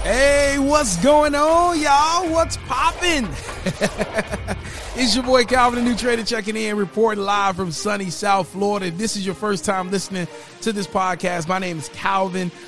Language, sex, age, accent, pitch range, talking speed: English, male, 30-49, American, 140-180 Hz, 170 wpm